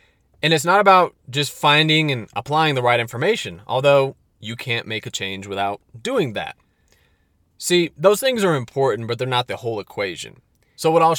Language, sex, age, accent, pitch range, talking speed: English, male, 30-49, American, 110-160 Hz, 180 wpm